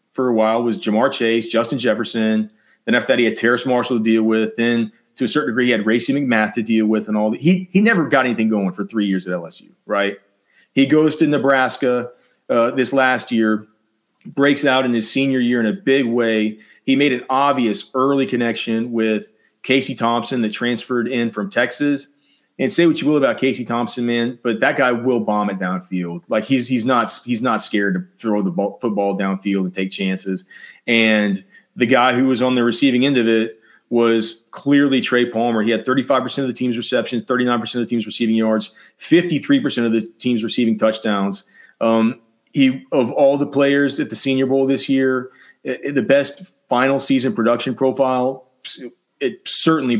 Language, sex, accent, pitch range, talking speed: English, male, American, 110-130 Hz, 205 wpm